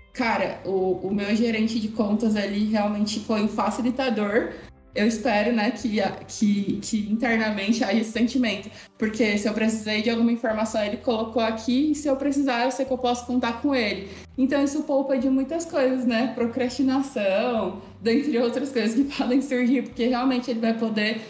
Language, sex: Portuguese, female